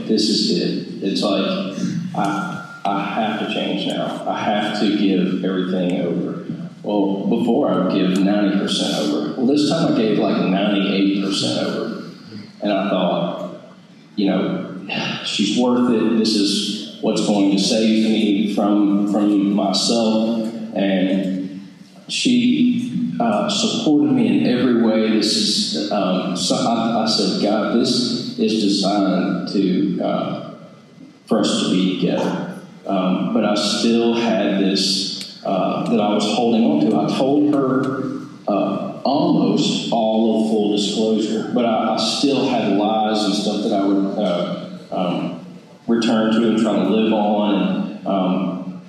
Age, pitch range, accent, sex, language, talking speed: 40-59, 95-115 Hz, American, male, English, 150 wpm